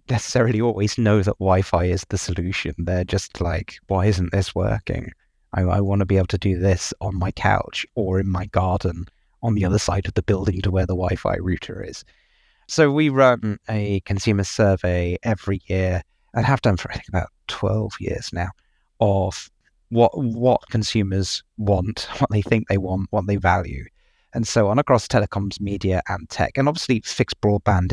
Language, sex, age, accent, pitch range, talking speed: English, male, 30-49, British, 95-115 Hz, 180 wpm